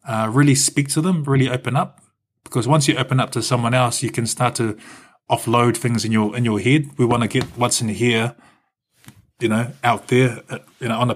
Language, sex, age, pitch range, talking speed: English, male, 20-39, 110-125 Hz, 230 wpm